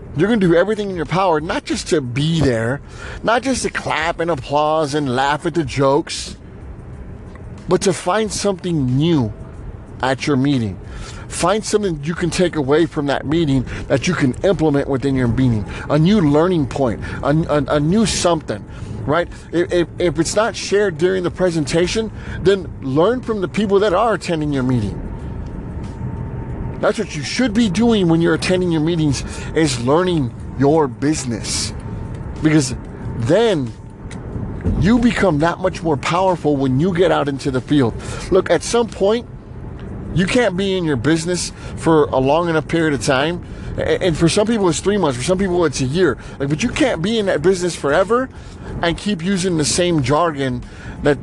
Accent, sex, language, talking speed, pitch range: American, male, English, 180 wpm, 135-185 Hz